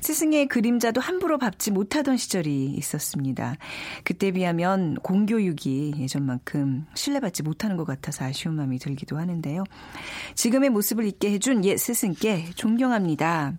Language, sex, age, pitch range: Korean, female, 40-59, 150-240 Hz